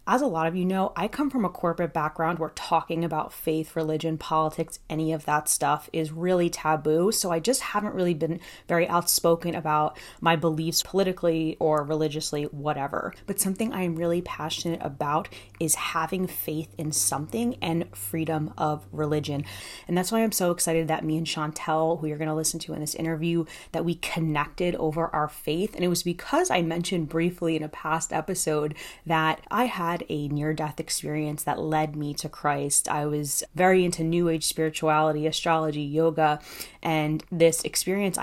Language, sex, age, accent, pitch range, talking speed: English, female, 20-39, American, 155-180 Hz, 175 wpm